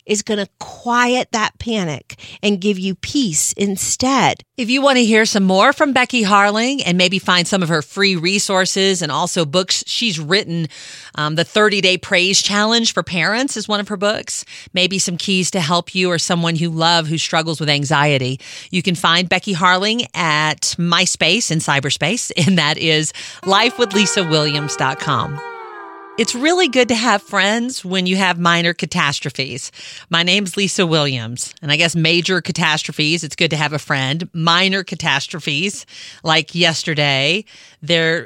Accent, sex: American, female